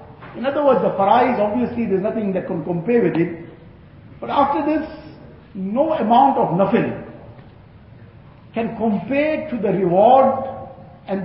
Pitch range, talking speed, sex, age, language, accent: 175-250 Hz, 140 wpm, male, 50-69, English, Indian